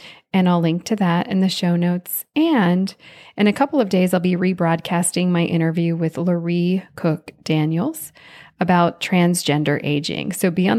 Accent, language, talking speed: American, English, 165 wpm